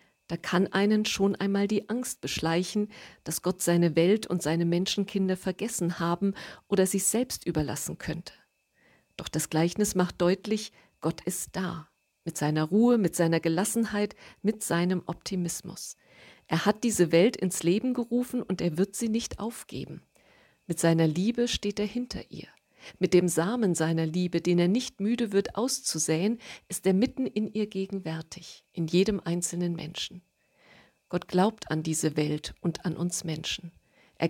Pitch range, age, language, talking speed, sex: 170-210 Hz, 50-69, German, 155 wpm, female